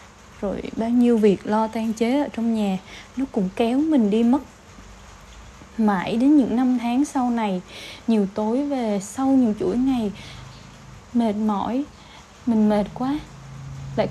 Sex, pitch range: female, 210-280 Hz